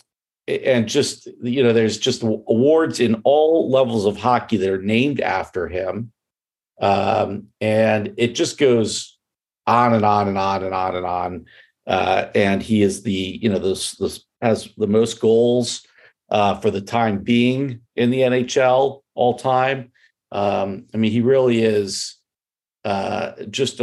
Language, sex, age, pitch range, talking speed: English, male, 50-69, 100-125 Hz, 155 wpm